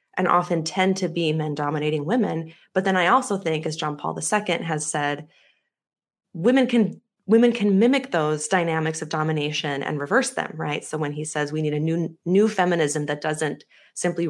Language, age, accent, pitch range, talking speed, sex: English, 20-39, American, 150-185 Hz, 190 wpm, female